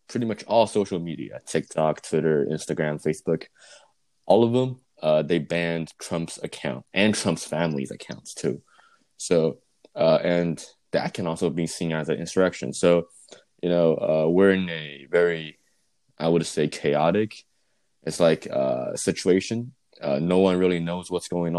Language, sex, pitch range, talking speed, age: English, male, 80-95 Hz, 155 wpm, 20-39